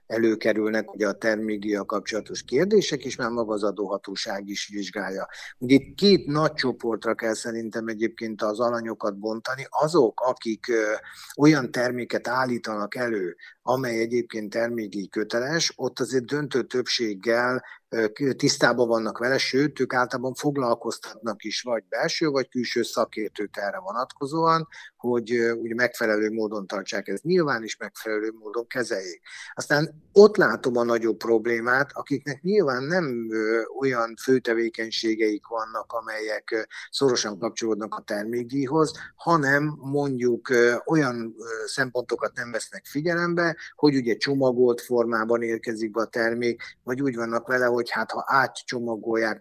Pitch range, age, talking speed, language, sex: 110-135 Hz, 50-69, 125 wpm, Hungarian, male